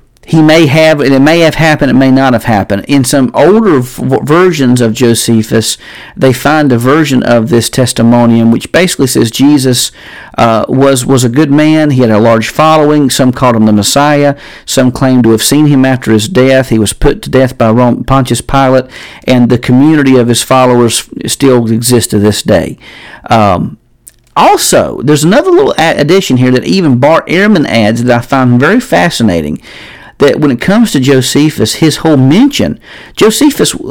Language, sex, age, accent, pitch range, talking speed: English, male, 50-69, American, 120-150 Hz, 180 wpm